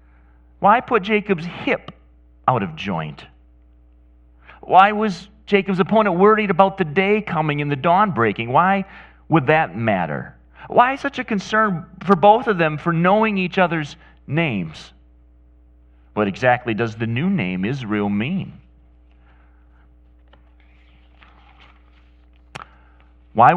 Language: English